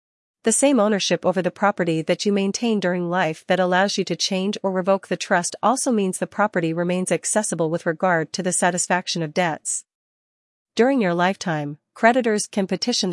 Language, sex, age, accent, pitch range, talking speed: English, female, 40-59, American, 175-205 Hz, 180 wpm